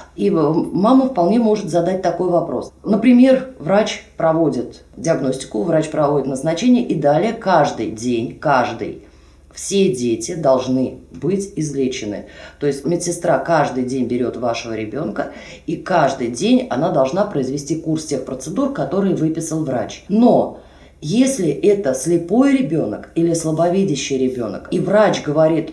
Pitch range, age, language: 150-200 Hz, 20-39, Russian